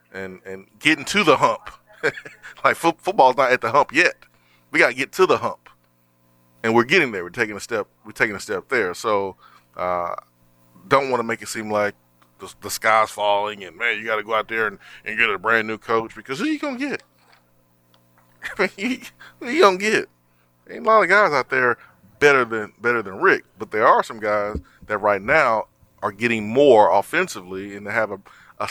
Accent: American